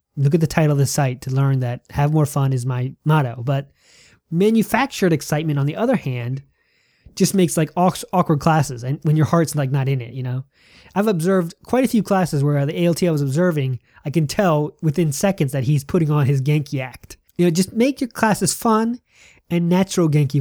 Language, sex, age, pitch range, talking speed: English, male, 20-39, 140-180 Hz, 210 wpm